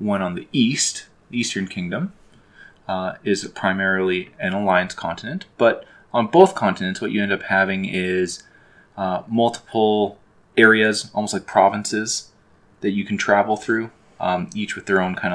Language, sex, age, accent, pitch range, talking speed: English, male, 20-39, American, 90-110 Hz, 155 wpm